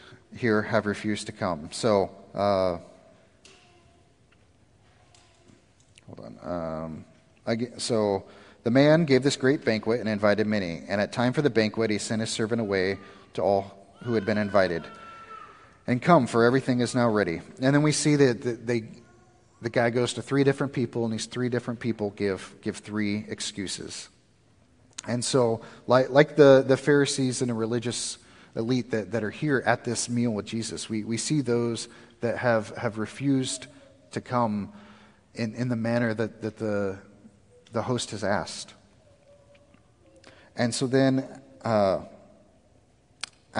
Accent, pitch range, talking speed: American, 105-120 Hz, 155 wpm